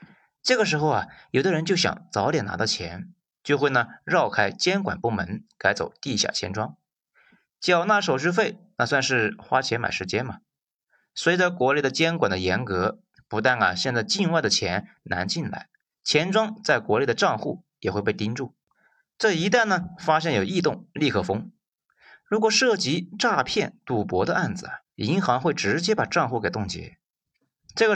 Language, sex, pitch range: Chinese, male, 110-180 Hz